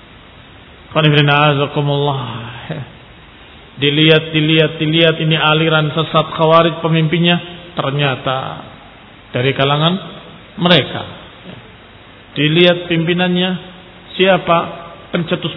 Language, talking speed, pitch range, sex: Indonesian, 60 wpm, 140-190 Hz, male